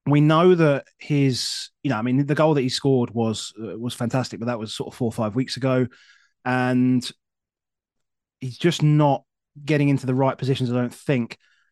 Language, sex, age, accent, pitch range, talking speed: English, male, 30-49, British, 125-150 Hz, 200 wpm